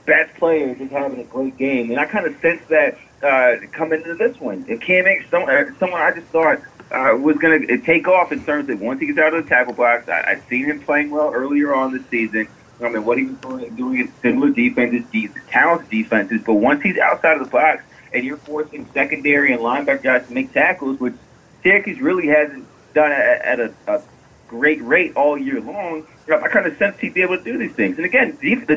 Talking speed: 225 wpm